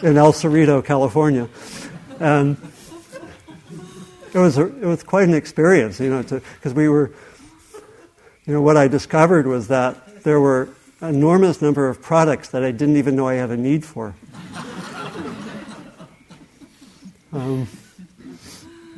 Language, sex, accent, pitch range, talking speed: English, male, American, 135-170 Hz, 135 wpm